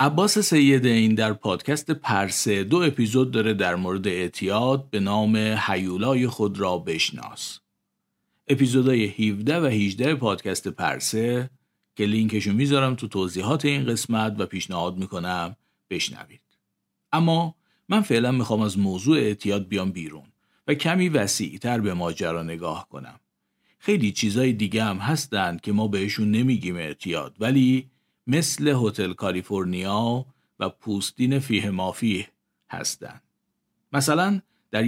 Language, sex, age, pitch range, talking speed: Persian, male, 50-69, 105-140 Hz, 125 wpm